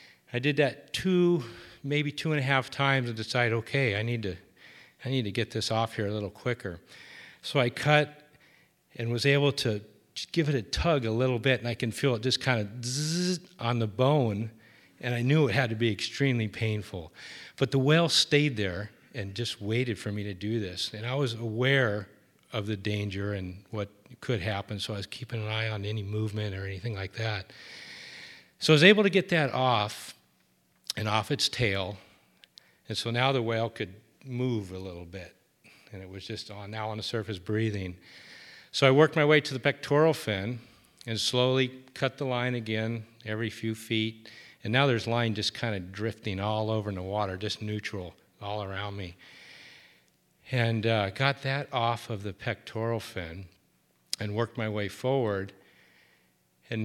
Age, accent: 40-59, American